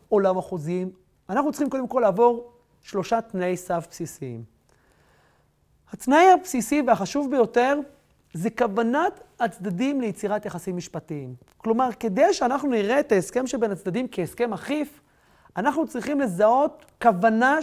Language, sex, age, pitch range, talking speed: Hebrew, male, 30-49, 185-255 Hz, 120 wpm